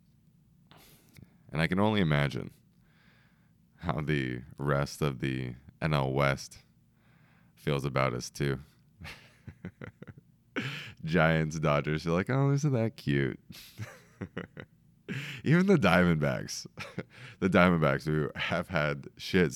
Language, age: English, 30-49